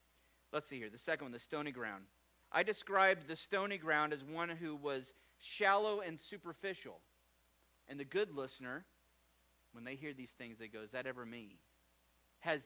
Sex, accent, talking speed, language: male, American, 175 wpm, English